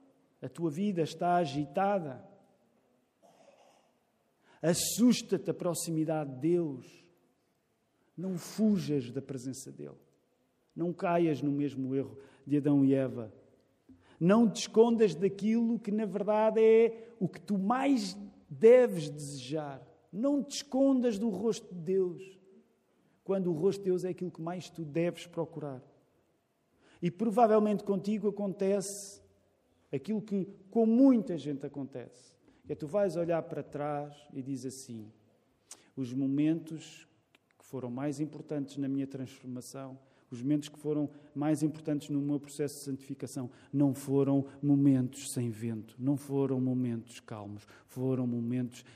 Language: Portuguese